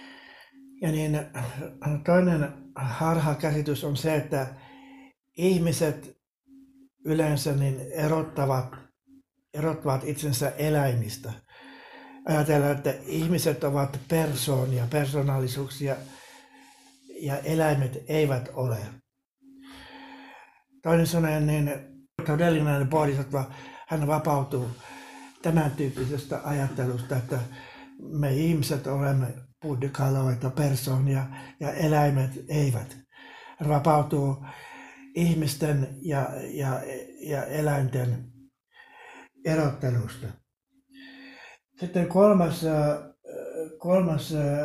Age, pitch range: 60-79, 135-170 Hz